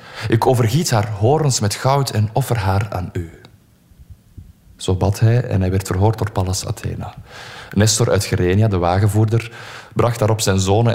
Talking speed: 165 wpm